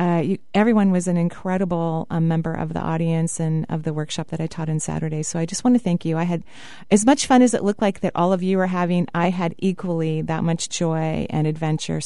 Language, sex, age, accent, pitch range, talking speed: English, female, 30-49, American, 165-215 Hz, 250 wpm